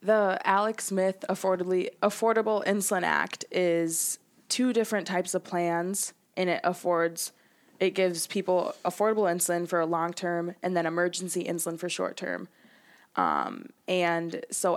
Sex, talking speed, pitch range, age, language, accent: female, 140 wpm, 170-185 Hz, 20-39, English, American